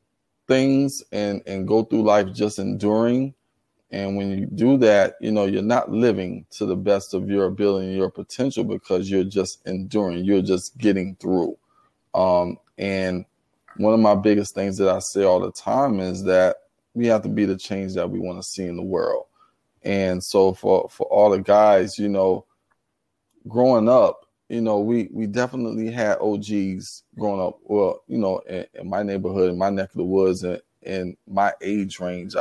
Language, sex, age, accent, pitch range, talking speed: English, male, 20-39, American, 95-105 Hz, 190 wpm